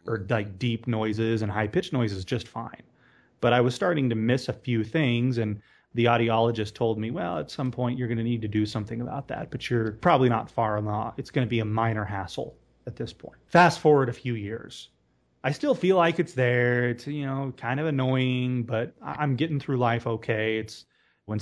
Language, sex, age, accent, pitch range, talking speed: English, male, 30-49, American, 110-130 Hz, 220 wpm